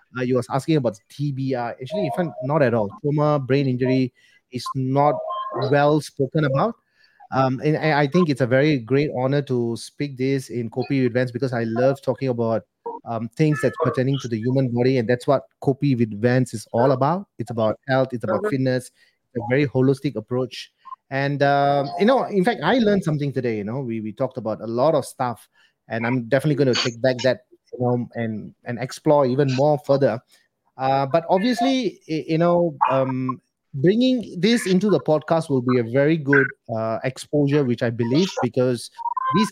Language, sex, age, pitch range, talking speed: English, male, 30-49, 125-155 Hz, 195 wpm